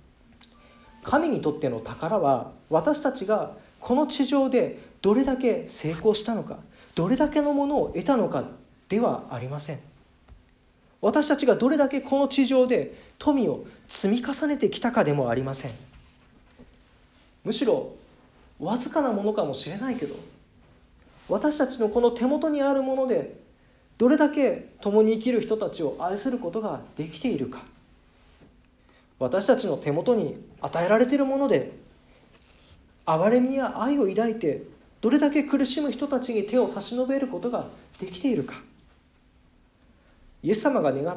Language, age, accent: Japanese, 40-59, native